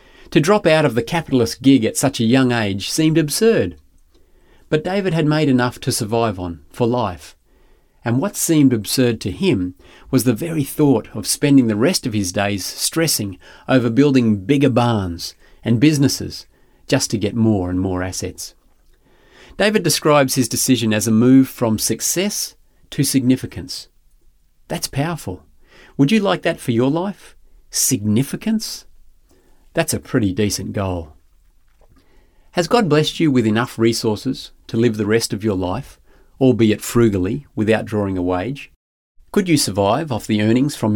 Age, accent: 40-59, Australian